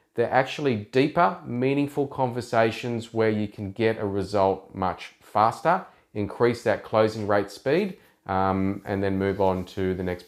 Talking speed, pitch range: 150 wpm, 105-130 Hz